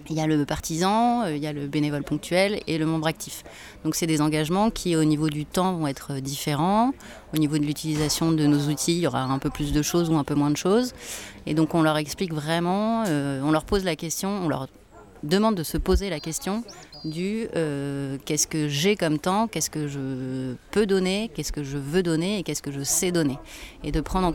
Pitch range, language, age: 140-175 Hz, French, 30-49